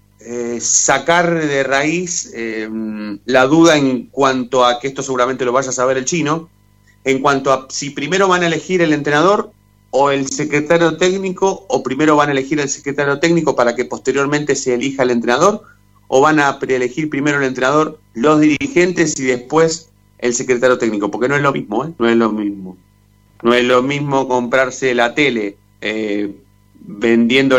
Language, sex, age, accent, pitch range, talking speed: Spanish, male, 30-49, Argentinian, 110-145 Hz, 175 wpm